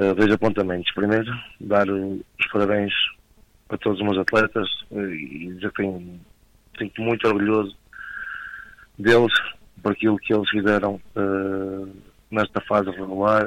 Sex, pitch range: male, 100-110 Hz